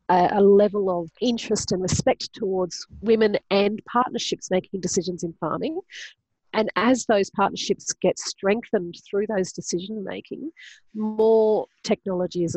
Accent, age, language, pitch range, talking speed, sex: Australian, 40-59, English, 175-210 Hz, 130 wpm, female